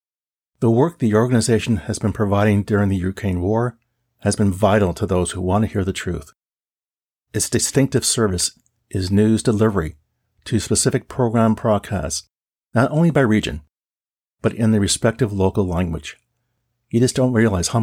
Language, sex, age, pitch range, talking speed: English, male, 50-69, 95-120 Hz, 160 wpm